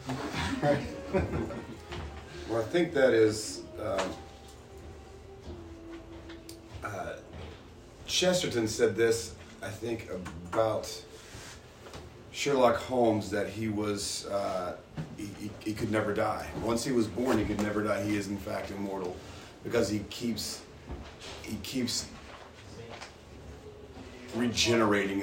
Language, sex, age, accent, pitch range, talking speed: English, male, 40-59, American, 95-115 Hz, 105 wpm